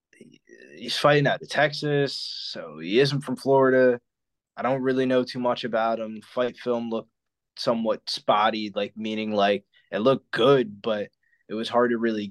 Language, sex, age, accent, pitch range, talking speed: English, male, 20-39, American, 110-140 Hz, 170 wpm